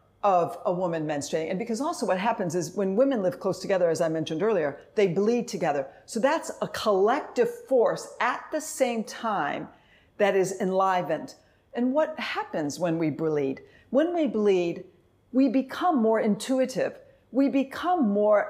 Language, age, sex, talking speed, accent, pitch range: English, 50-69, female, 160 wpm, American, 190-255 Hz